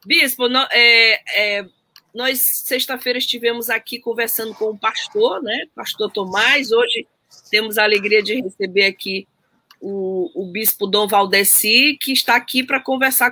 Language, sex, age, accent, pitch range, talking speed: Portuguese, female, 20-39, Brazilian, 210-265 Hz, 130 wpm